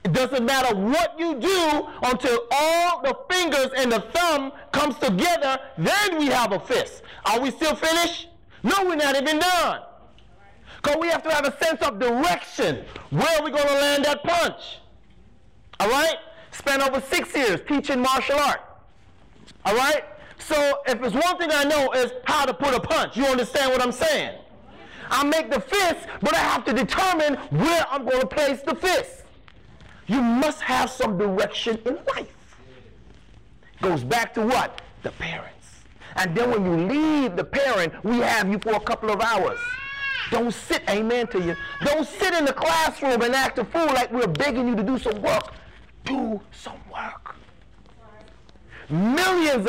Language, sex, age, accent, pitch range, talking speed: English, male, 30-49, American, 245-320 Hz, 175 wpm